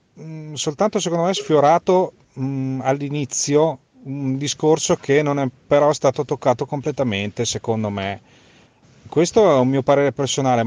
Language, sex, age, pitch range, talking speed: Italian, male, 30-49, 120-155 Hz, 125 wpm